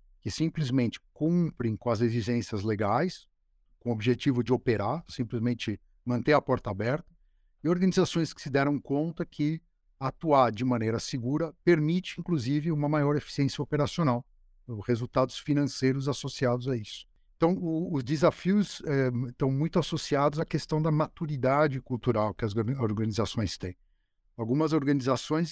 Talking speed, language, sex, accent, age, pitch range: 135 wpm, Portuguese, male, Brazilian, 60-79, 120-150 Hz